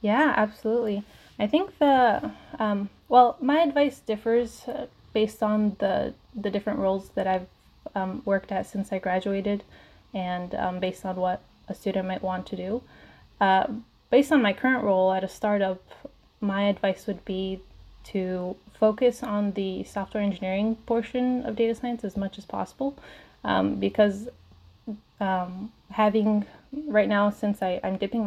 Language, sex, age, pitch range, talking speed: English, female, 20-39, 190-215 Hz, 155 wpm